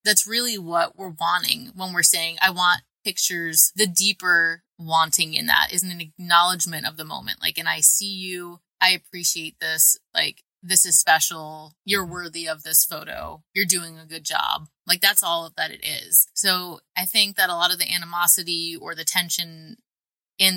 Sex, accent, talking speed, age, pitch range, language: female, American, 185 wpm, 20-39, 160-185 Hz, English